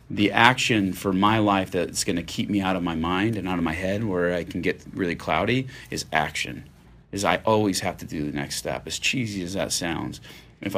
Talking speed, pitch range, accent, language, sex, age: 235 wpm, 85-105 Hz, American, English, male, 30-49